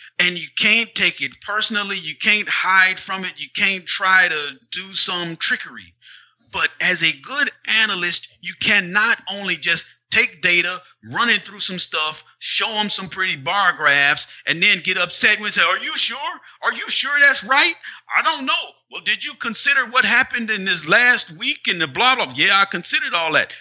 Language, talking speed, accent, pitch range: English, 195 wpm, American, 155-200 Hz